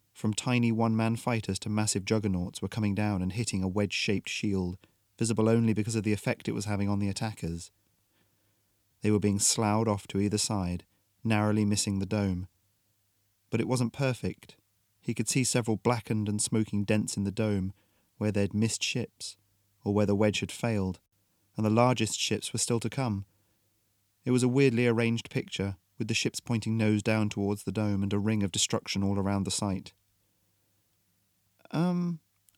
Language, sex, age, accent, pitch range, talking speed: English, male, 30-49, British, 100-120 Hz, 180 wpm